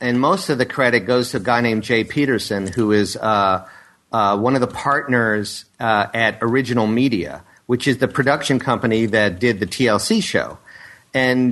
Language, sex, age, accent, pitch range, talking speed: English, male, 50-69, American, 115-150 Hz, 180 wpm